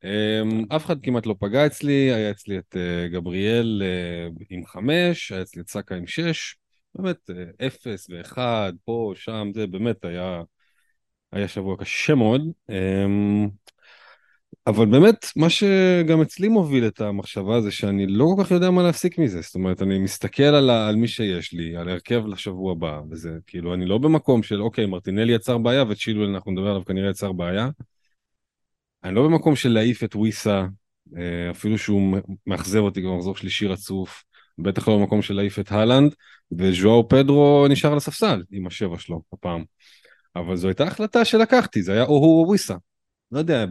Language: Hebrew